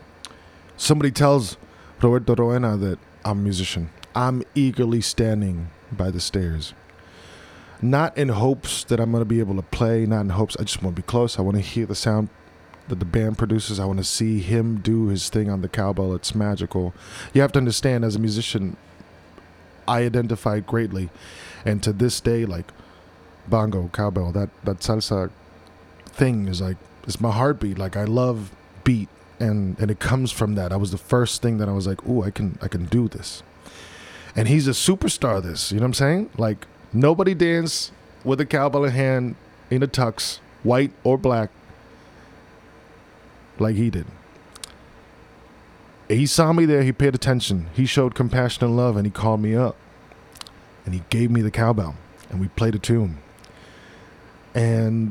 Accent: American